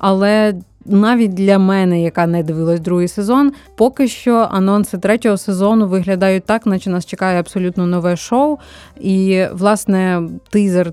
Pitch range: 175-215 Hz